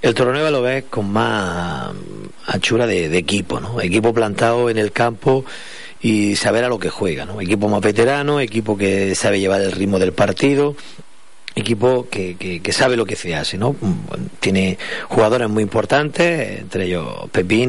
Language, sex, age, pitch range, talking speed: Spanish, male, 40-59, 100-120 Hz, 175 wpm